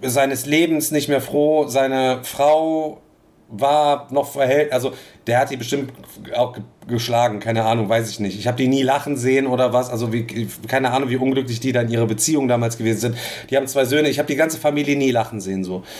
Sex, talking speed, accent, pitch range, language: male, 220 wpm, German, 120-150 Hz, German